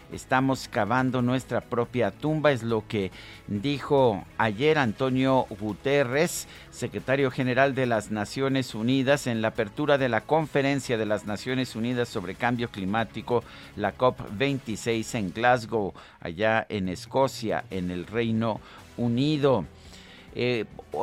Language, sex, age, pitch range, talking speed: Spanish, male, 50-69, 110-135 Hz, 125 wpm